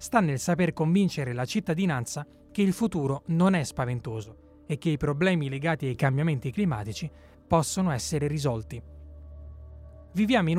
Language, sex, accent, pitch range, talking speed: Italian, male, native, 135-190 Hz, 140 wpm